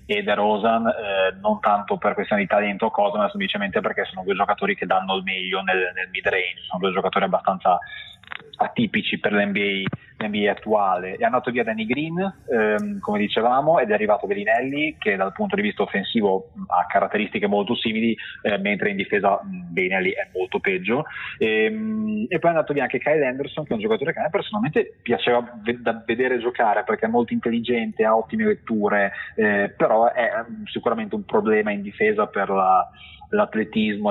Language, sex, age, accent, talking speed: Italian, male, 20-39, native, 185 wpm